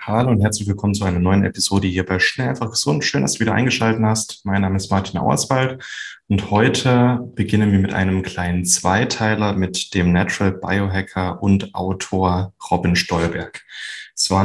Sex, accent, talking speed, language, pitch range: male, German, 180 wpm, German, 95-115 Hz